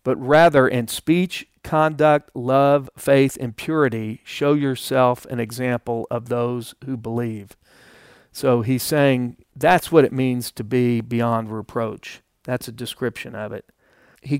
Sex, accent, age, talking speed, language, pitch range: male, American, 40-59, 140 wpm, English, 125-145 Hz